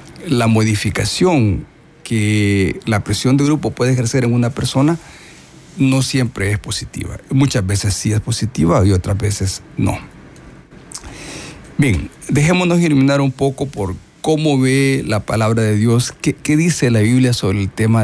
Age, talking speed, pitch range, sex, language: 50-69, 145 wpm, 100-135 Hz, male, Spanish